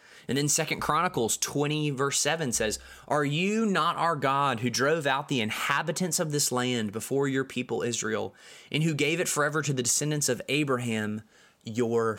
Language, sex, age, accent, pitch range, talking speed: English, male, 20-39, American, 115-145 Hz, 175 wpm